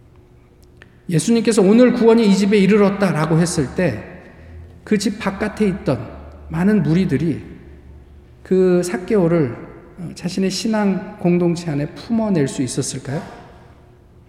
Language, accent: Korean, native